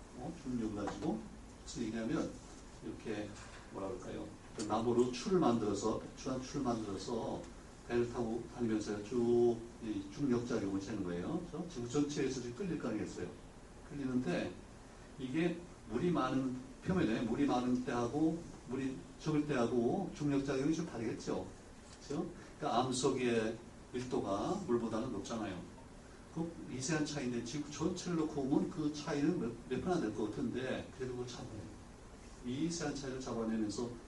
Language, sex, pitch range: Korean, male, 110-135 Hz